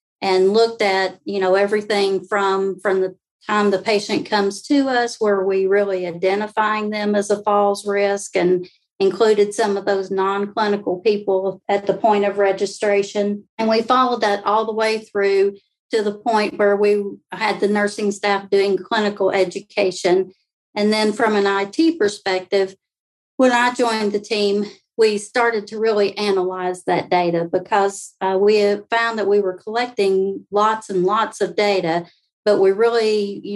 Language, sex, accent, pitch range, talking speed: English, female, American, 195-215 Hz, 165 wpm